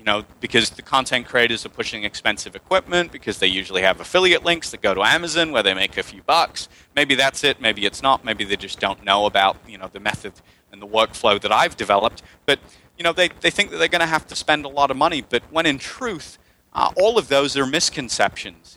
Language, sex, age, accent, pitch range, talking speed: English, male, 30-49, American, 105-150 Hz, 240 wpm